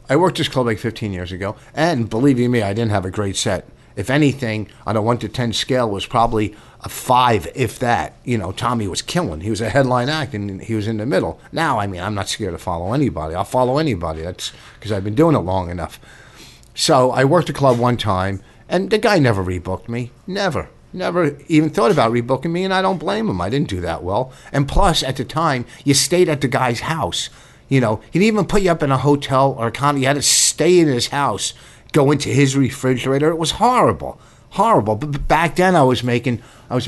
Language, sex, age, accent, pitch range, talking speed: English, male, 50-69, American, 105-140 Hz, 235 wpm